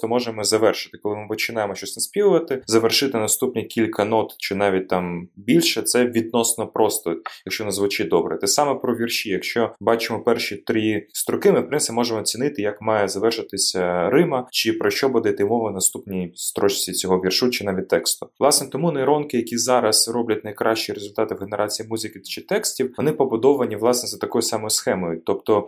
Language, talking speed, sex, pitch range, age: Ukrainian, 175 wpm, male, 100-125 Hz, 20-39